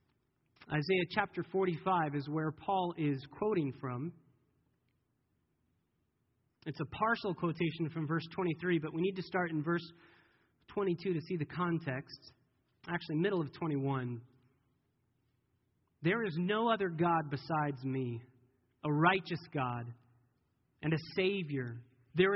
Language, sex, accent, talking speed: English, male, American, 125 wpm